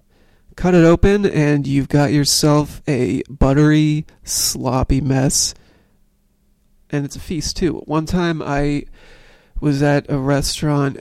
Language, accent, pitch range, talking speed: English, American, 130-155 Hz, 125 wpm